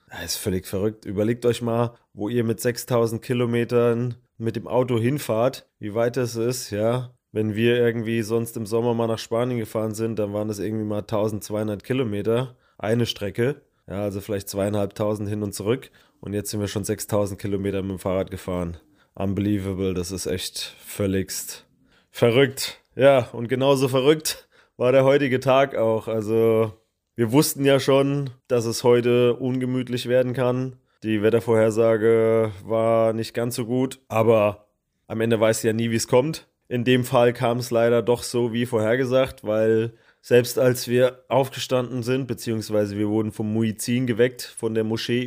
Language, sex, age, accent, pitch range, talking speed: German, male, 20-39, German, 110-125 Hz, 165 wpm